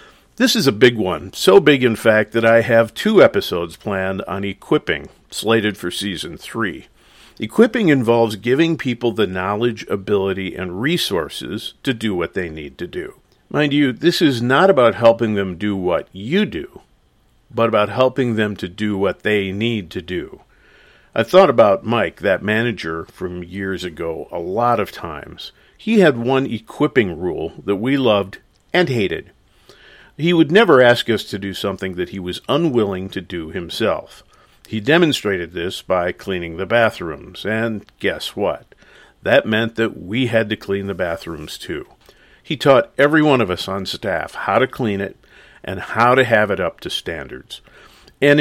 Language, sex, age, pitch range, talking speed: English, male, 50-69, 100-135 Hz, 170 wpm